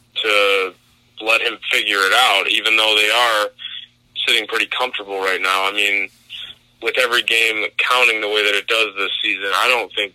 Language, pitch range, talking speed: English, 105-120 Hz, 185 wpm